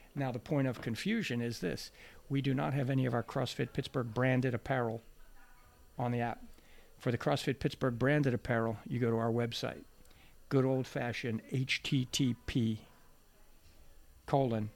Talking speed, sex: 145 wpm, male